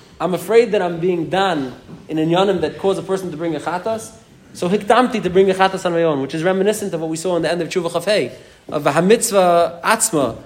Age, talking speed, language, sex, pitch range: 30-49, 250 wpm, English, male, 145-190 Hz